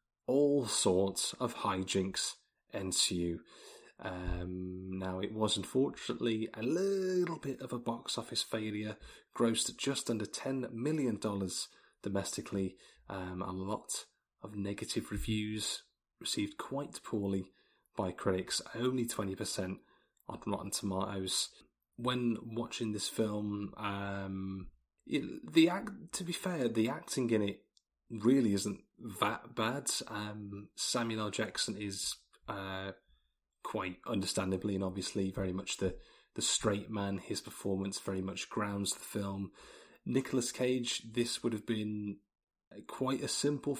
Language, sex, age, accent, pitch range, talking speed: English, male, 30-49, British, 95-120 Hz, 125 wpm